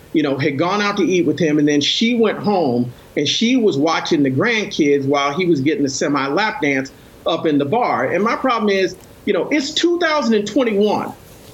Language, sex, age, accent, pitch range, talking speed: English, male, 40-59, American, 165-230 Hz, 210 wpm